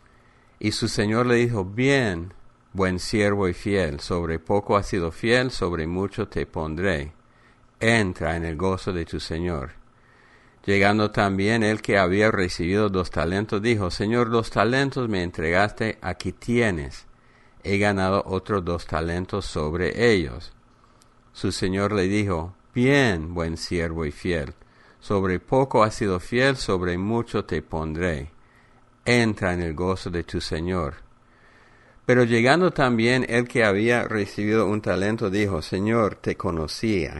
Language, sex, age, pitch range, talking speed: English, male, 50-69, 90-115 Hz, 140 wpm